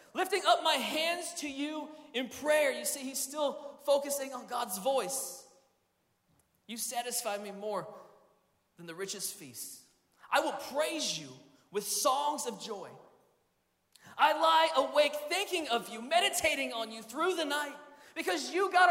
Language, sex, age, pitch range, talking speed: English, male, 20-39, 235-345 Hz, 150 wpm